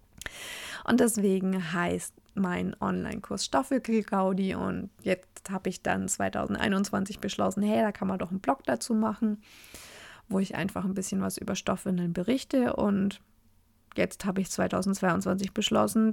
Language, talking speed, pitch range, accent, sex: German, 135 wpm, 190-230 Hz, German, female